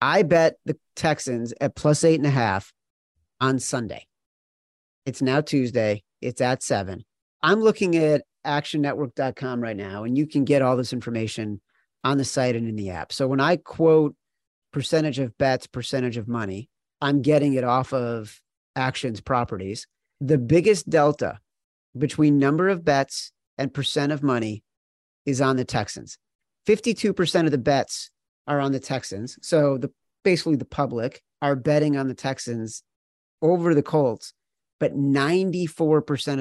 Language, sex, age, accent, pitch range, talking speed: English, male, 40-59, American, 120-150 Hz, 155 wpm